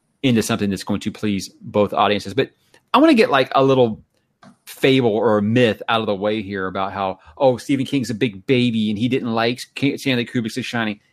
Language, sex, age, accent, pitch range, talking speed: English, male, 30-49, American, 105-135 Hz, 210 wpm